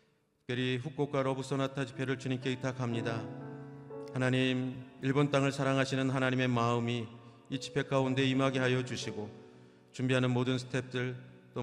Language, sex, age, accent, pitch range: Korean, male, 40-59, native, 110-130 Hz